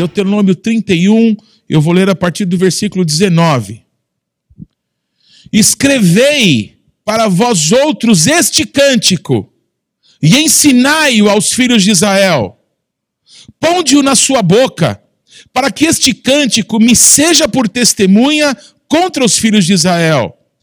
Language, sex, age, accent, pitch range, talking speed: Portuguese, male, 50-69, Brazilian, 185-270 Hz, 120 wpm